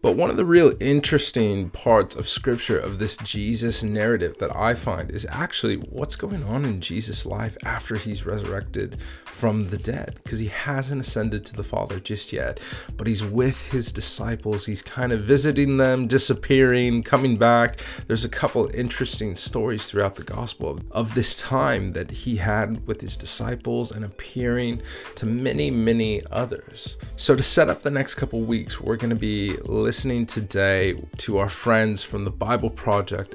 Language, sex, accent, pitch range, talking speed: English, male, American, 100-120 Hz, 175 wpm